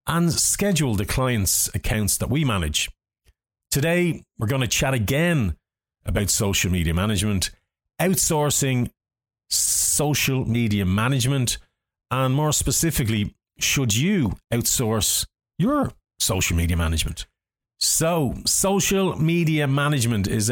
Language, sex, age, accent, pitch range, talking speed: English, male, 40-59, Irish, 95-130 Hz, 110 wpm